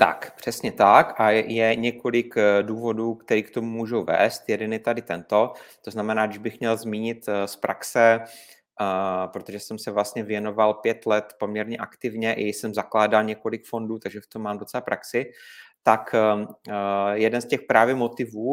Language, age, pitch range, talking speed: Czech, 30-49, 105-120 Hz, 160 wpm